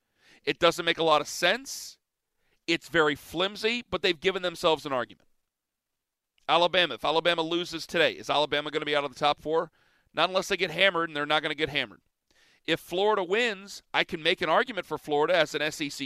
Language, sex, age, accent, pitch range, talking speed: English, male, 40-59, American, 155-190 Hz, 210 wpm